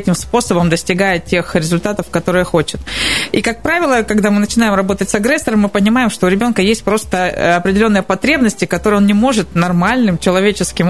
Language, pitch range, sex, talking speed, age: Russian, 180-215 Hz, female, 165 wpm, 20-39